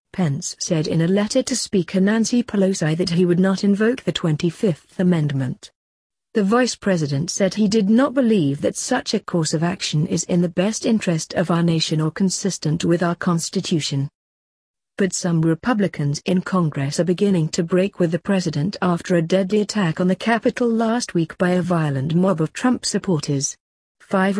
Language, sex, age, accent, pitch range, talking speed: English, female, 40-59, British, 160-195 Hz, 180 wpm